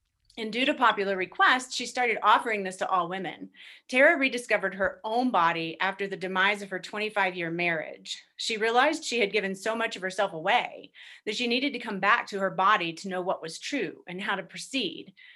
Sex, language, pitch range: female, English, 180-225 Hz